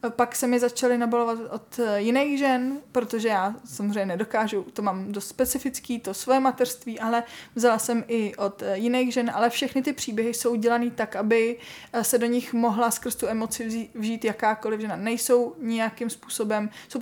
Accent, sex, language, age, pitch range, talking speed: native, female, Czech, 20-39, 210-235 Hz, 170 wpm